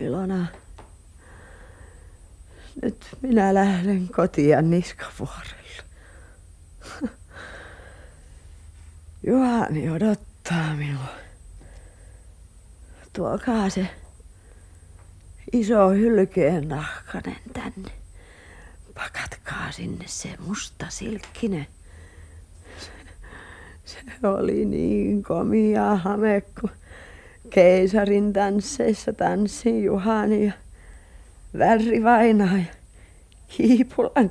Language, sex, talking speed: Finnish, female, 60 wpm